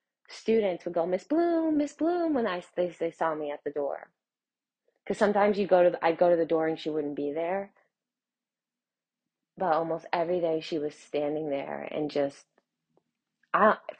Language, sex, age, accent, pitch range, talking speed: English, female, 20-39, American, 150-195 Hz, 180 wpm